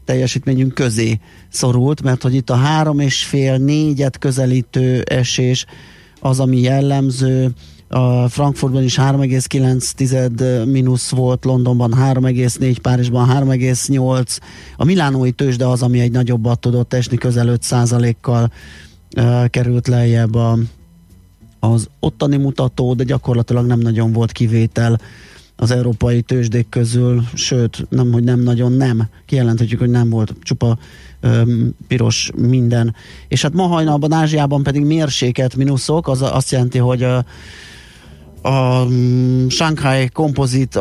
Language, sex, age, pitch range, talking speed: Hungarian, male, 30-49, 120-135 Hz, 125 wpm